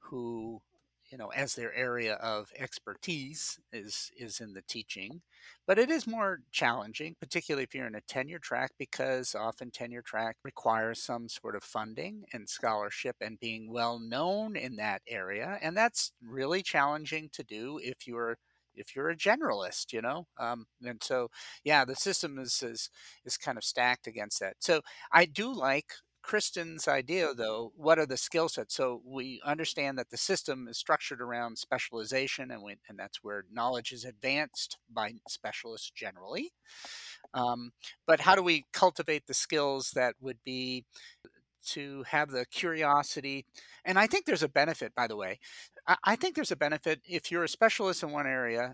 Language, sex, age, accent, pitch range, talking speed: English, male, 50-69, American, 120-170 Hz, 175 wpm